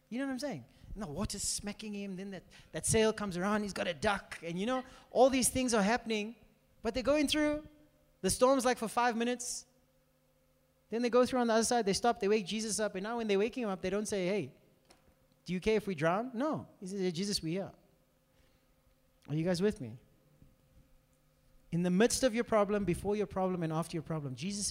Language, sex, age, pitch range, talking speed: English, male, 30-49, 160-235 Hz, 230 wpm